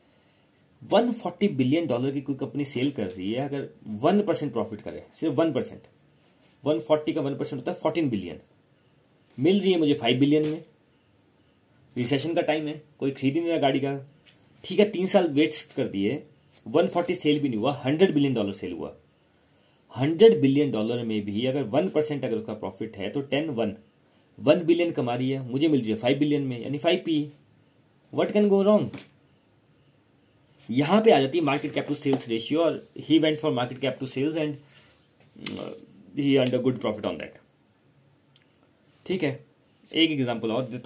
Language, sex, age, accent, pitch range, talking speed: Hindi, male, 40-59, native, 130-160 Hz, 180 wpm